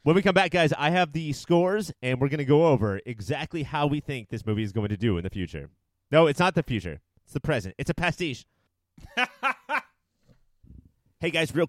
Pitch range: 105-135 Hz